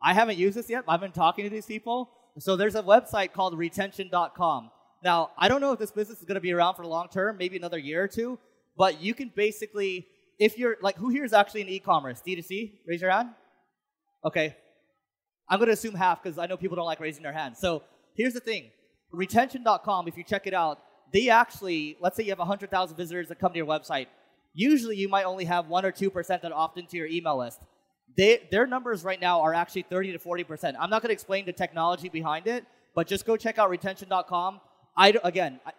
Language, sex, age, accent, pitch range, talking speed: English, male, 20-39, American, 175-210 Hz, 215 wpm